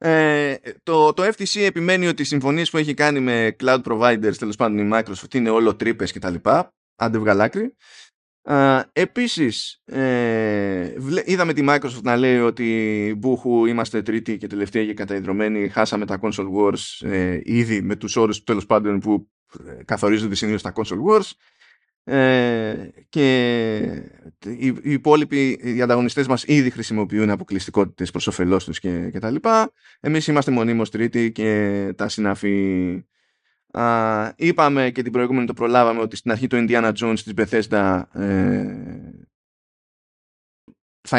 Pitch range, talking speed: 105-135 Hz, 135 wpm